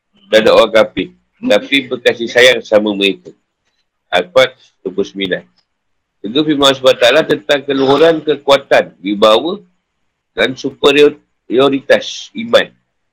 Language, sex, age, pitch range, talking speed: Malay, male, 50-69, 110-145 Hz, 100 wpm